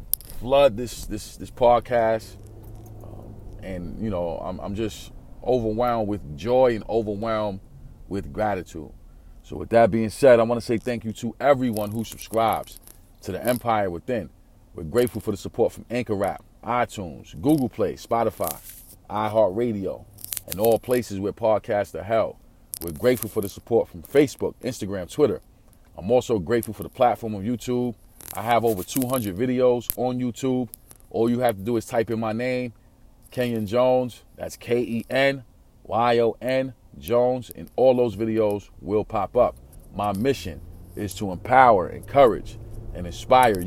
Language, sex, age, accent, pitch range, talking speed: English, male, 40-59, American, 105-120 Hz, 155 wpm